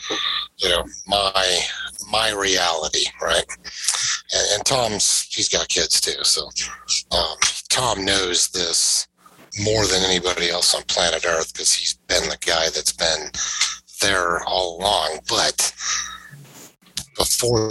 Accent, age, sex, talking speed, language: American, 50-69, male, 125 wpm, English